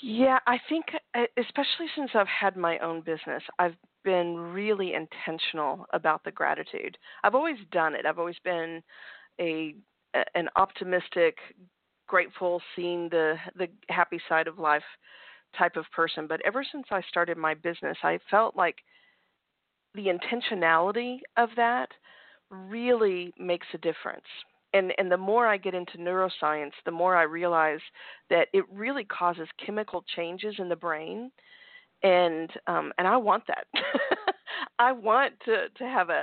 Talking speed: 145 wpm